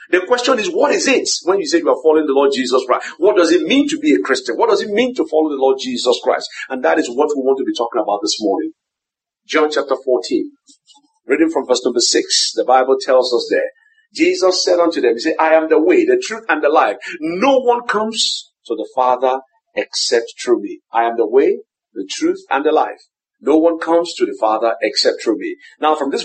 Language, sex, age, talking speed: English, male, 50-69, 240 wpm